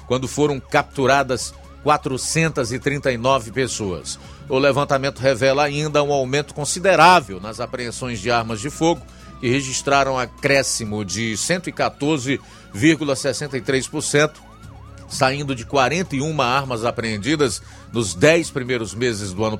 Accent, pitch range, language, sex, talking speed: Brazilian, 110-145 Hz, Portuguese, male, 105 wpm